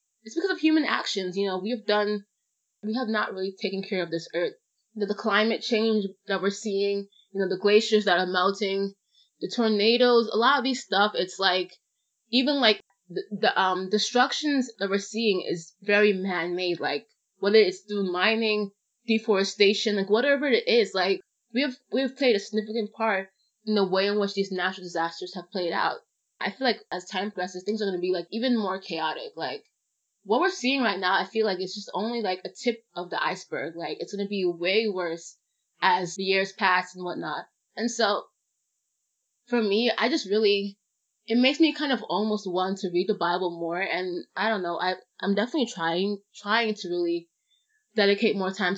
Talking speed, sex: 200 wpm, female